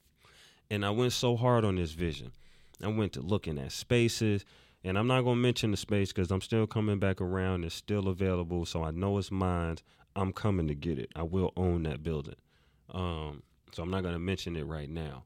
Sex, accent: male, American